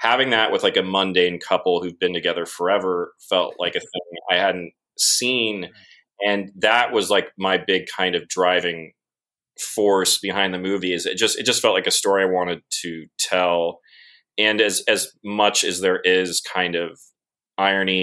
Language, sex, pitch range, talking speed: English, male, 90-120 Hz, 180 wpm